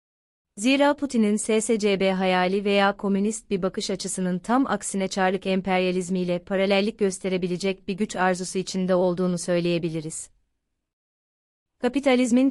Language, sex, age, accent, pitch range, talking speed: Turkish, female, 30-49, native, 185-210 Hz, 105 wpm